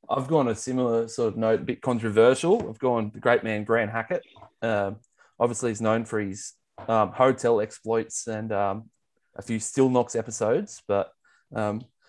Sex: male